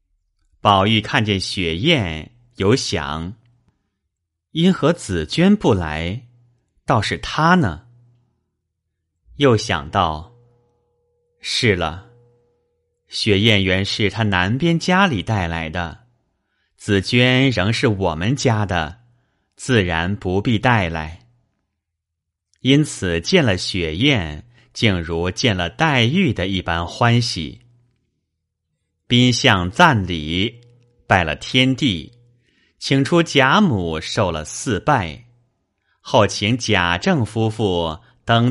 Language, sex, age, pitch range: Chinese, male, 30-49, 85-120 Hz